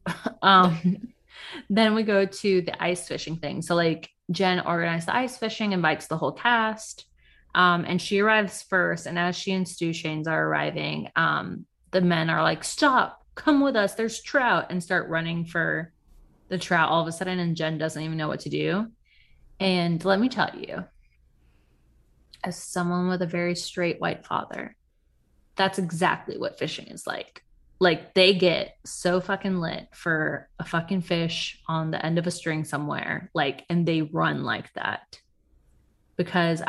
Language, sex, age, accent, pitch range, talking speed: English, female, 20-39, American, 160-185 Hz, 170 wpm